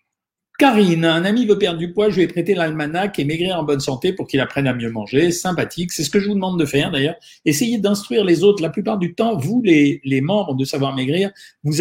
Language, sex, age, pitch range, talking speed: French, male, 50-69, 140-185 Hz, 240 wpm